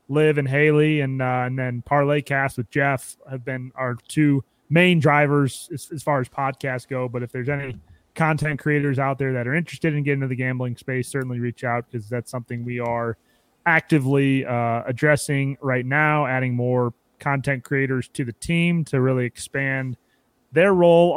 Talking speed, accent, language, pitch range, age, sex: 180 wpm, American, English, 125-145 Hz, 30-49, male